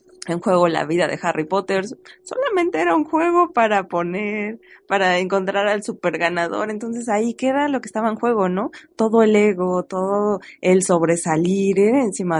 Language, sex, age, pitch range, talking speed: Spanish, female, 20-39, 160-200 Hz, 165 wpm